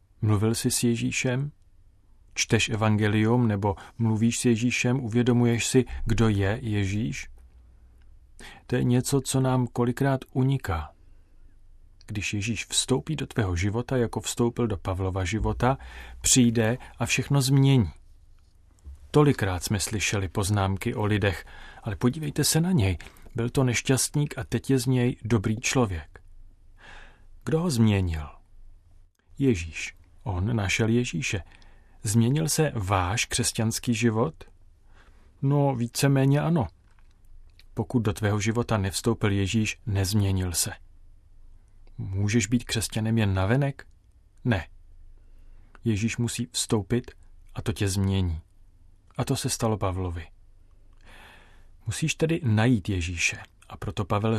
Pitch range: 95-120 Hz